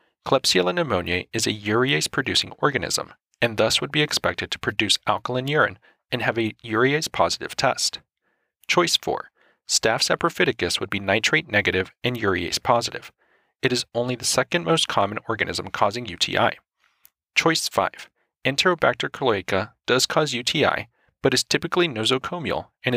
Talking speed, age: 135 wpm, 40-59